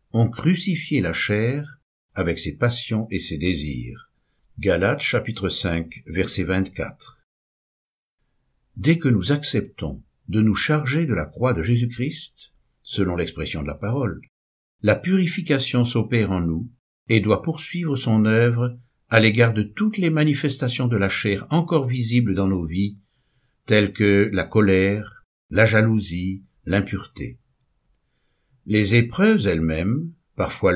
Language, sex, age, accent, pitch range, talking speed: French, male, 60-79, French, 95-140 Hz, 130 wpm